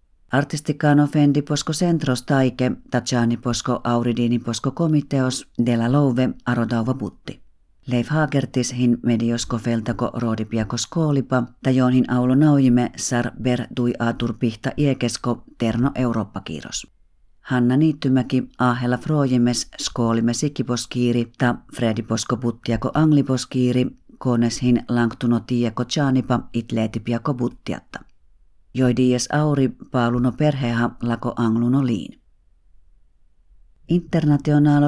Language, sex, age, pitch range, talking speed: Finnish, female, 40-59, 120-135 Hz, 95 wpm